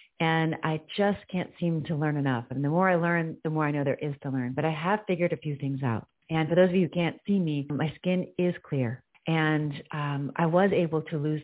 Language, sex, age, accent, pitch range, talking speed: English, female, 40-59, American, 145-180 Hz, 255 wpm